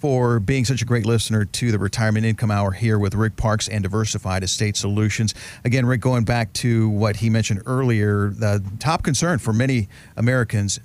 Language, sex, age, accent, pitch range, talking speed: English, male, 40-59, American, 110-140 Hz, 190 wpm